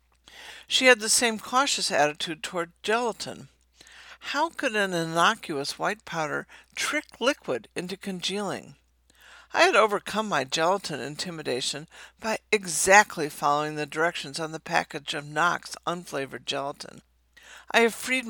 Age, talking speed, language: 60-79, 130 wpm, English